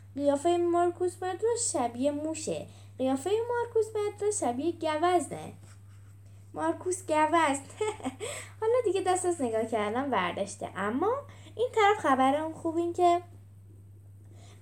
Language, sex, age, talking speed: Persian, female, 10-29, 105 wpm